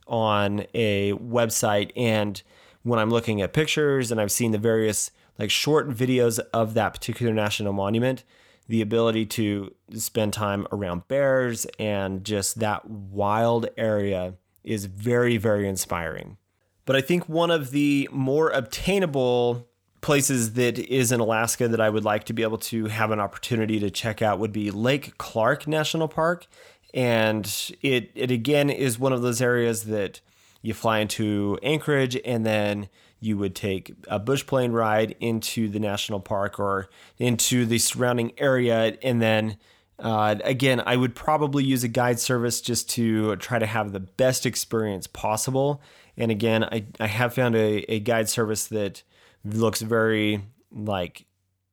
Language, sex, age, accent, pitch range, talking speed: English, male, 30-49, American, 105-125 Hz, 160 wpm